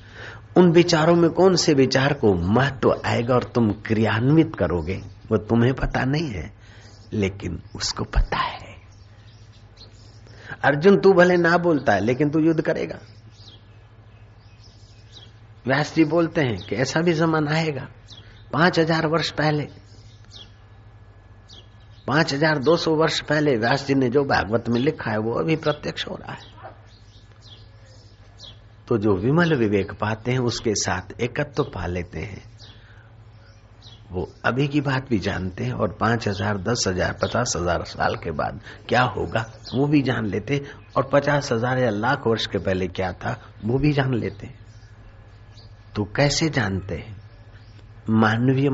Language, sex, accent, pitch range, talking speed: Hindi, male, native, 105-135 Hz, 145 wpm